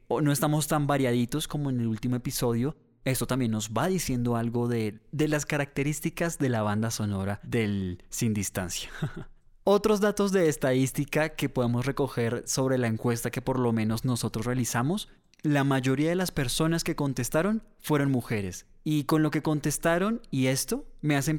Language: English